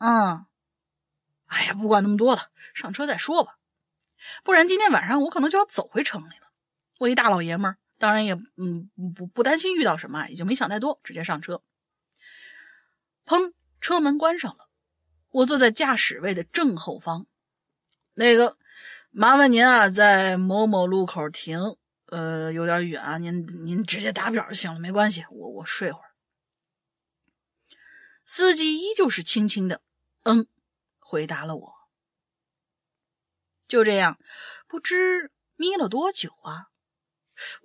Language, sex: Chinese, female